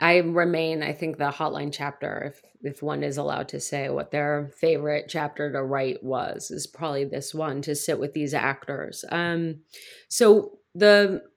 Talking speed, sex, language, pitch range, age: 175 wpm, female, English, 145-175 Hz, 30-49